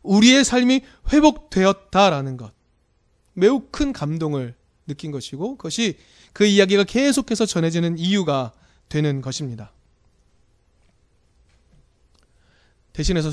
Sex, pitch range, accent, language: male, 130-210 Hz, native, Korean